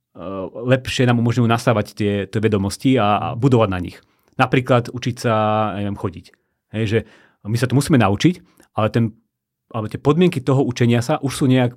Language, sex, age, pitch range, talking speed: Slovak, male, 30-49, 110-130 Hz, 175 wpm